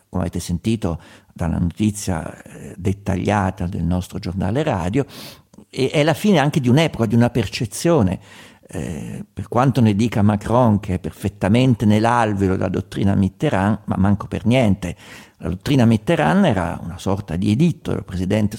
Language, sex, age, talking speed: Italian, male, 50-69, 150 wpm